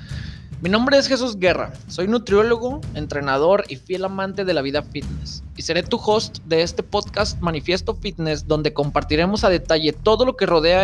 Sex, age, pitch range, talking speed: male, 20-39, 130-205 Hz, 175 wpm